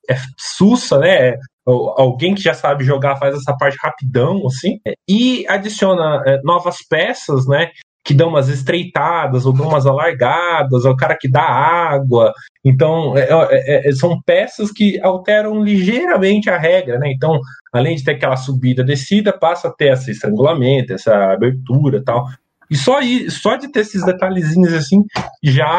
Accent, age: Brazilian, 20-39